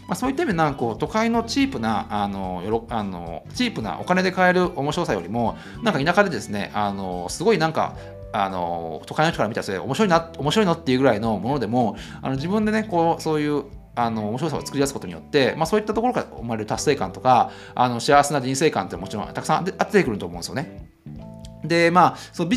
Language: Japanese